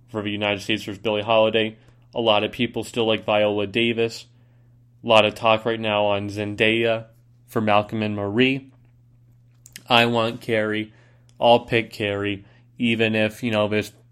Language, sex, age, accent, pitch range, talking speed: English, male, 20-39, American, 105-120 Hz, 160 wpm